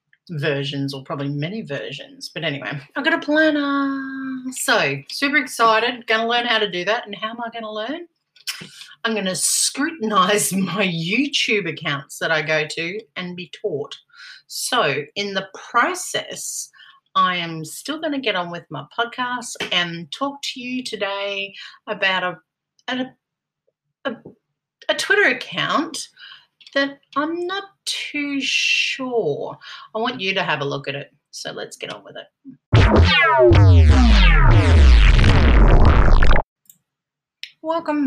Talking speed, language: 140 wpm, English